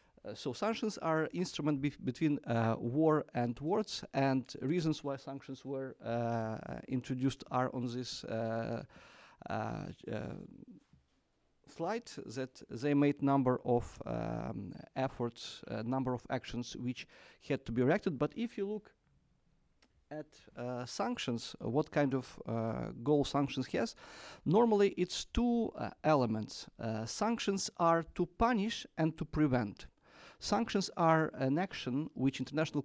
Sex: male